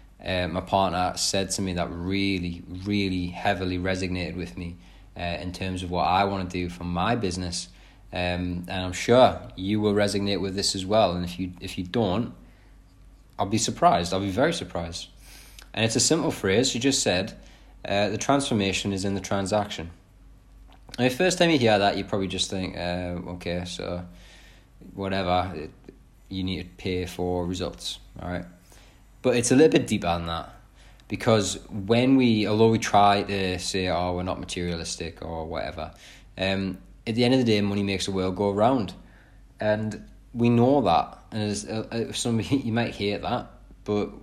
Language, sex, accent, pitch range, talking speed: English, male, British, 90-110 Hz, 180 wpm